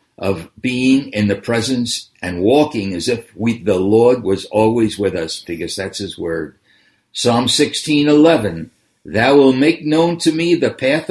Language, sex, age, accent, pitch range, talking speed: English, male, 60-79, American, 105-150 Hz, 155 wpm